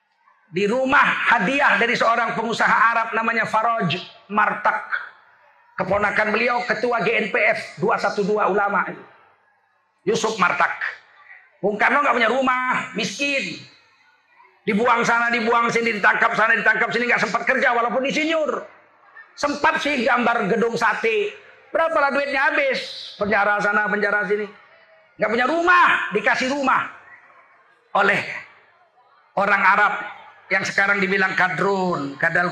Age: 40-59